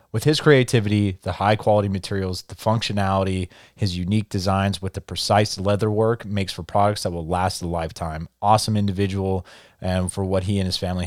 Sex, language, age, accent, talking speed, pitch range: male, English, 30-49, American, 185 wpm, 95-110 Hz